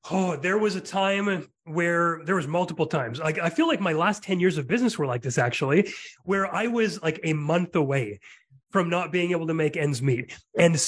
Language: English